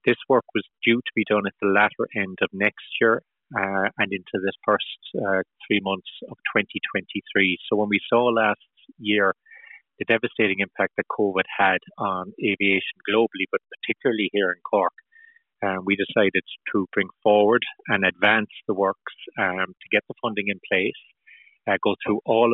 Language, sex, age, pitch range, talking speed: English, male, 30-49, 100-115 Hz, 175 wpm